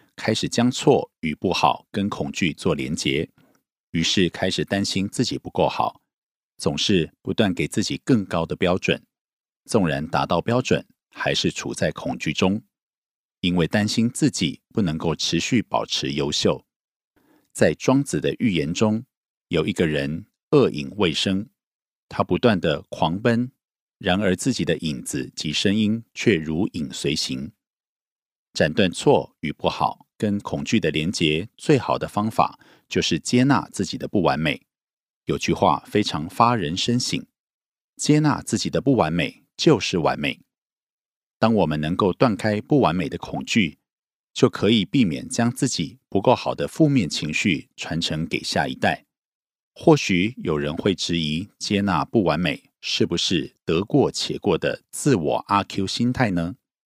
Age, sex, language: 50-69, male, Korean